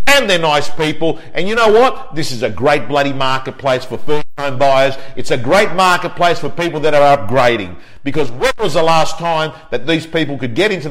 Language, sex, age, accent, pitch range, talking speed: English, male, 50-69, Australian, 145-195 Hz, 210 wpm